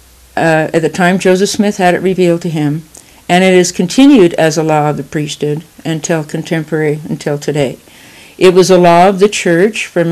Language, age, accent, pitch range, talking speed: English, 60-79, American, 155-180 Hz, 195 wpm